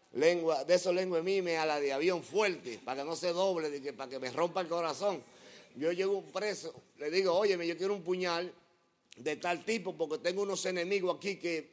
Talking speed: 205 wpm